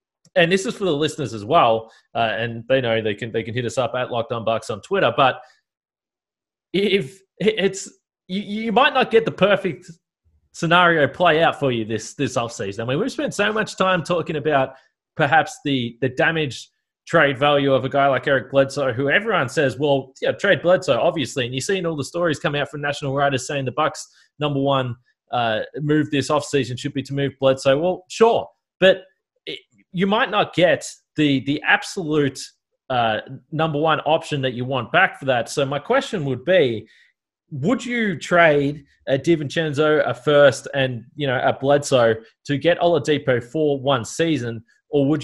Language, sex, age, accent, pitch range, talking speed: English, male, 20-39, Australian, 130-170 Hz, 195 wpm